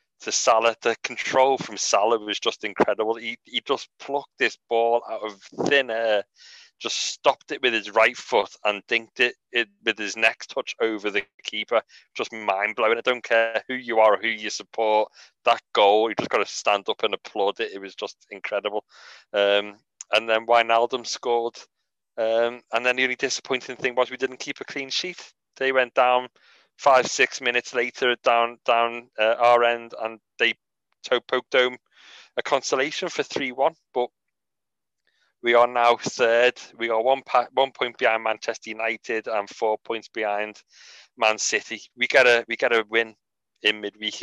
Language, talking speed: English, 185 wpm